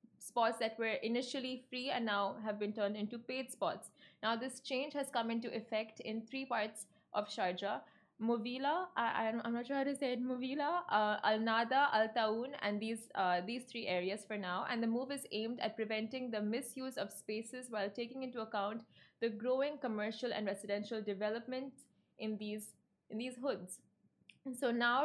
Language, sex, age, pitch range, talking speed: Arabic, female, 20-39, 210-250 Hz, 175 wpm